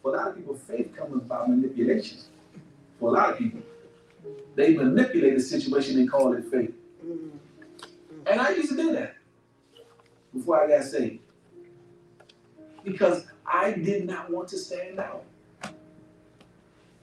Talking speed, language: 140 wpm, English